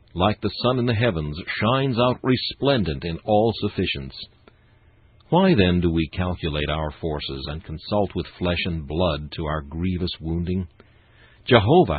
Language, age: English, 60-79